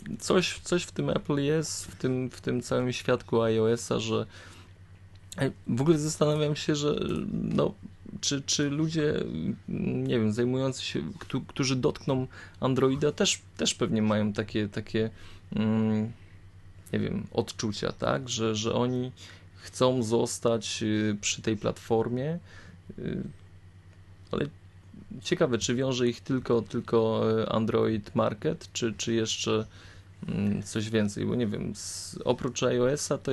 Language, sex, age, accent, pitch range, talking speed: Polish, male, 20-39, native, 100-125 Hz, 120 wpm